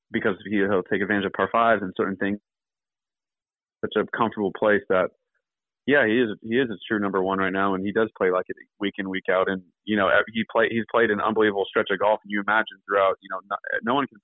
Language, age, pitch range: English, 30-49, 95-110 Hz